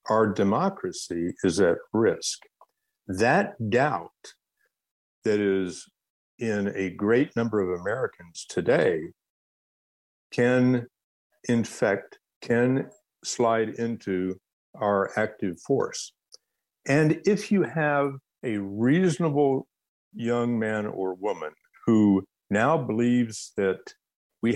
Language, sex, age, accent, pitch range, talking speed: English, male, 60-79, American, 95-125 Hz, 95 wpm